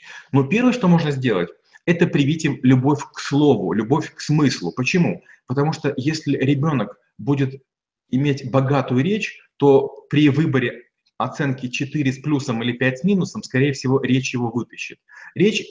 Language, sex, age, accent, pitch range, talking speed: Russian, male, 30-49, native, 125-145 Hz, 155 wpm